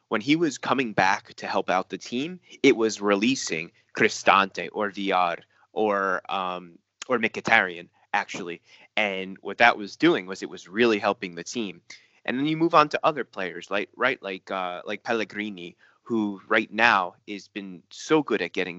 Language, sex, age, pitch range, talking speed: Persian, male, 30-49, 95-120 Hz, 180 wpm